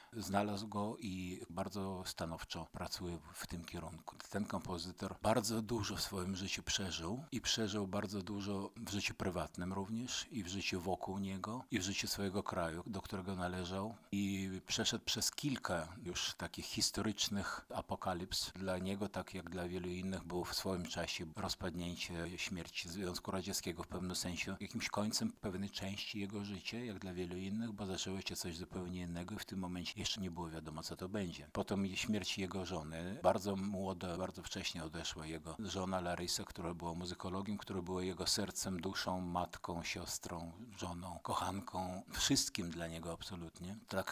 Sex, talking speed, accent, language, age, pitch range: male, 165 wpm, native, Polish, 50-69, 90-100 Hz